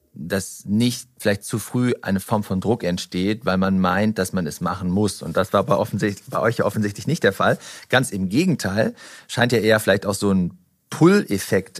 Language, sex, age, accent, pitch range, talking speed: German, male, 40-59, German, 100-120 Hz, 205 wpm